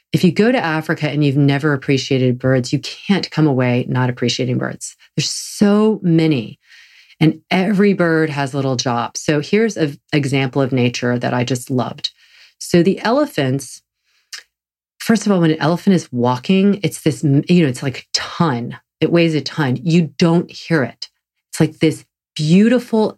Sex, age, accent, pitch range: female, 40-59, American, 130-165 Hz